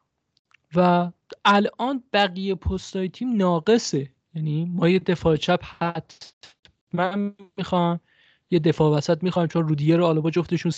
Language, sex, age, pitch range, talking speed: Persian, male, 20-39, 155-180 Hz, 130 wpm